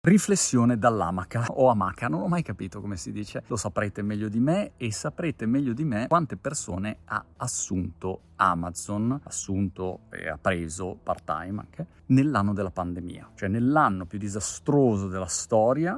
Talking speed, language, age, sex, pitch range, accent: 160 wpm, Italian, 30-49, male, 95-125 Hz, native